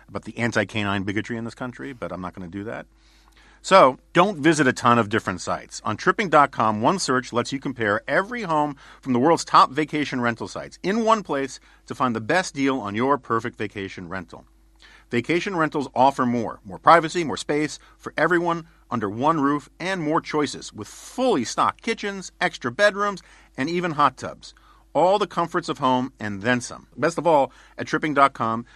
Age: 50-69